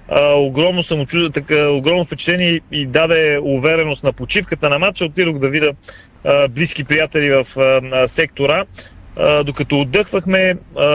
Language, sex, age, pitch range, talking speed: Bulgarian, male, 40-59, 145-175 Hz, 110 wpm